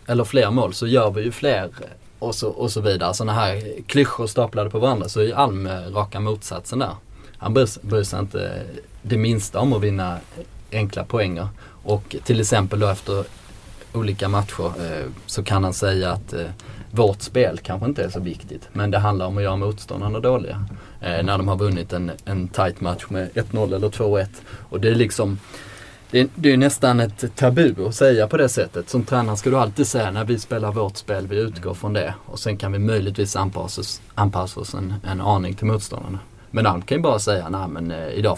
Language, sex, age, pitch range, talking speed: Swedish, male, 20-39, 95-115 Hz, 210 wpm